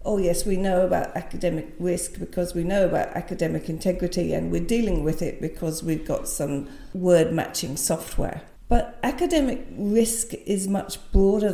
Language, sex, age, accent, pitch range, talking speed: English, female, 50-69, British, 180-215 Hz, 155 wpm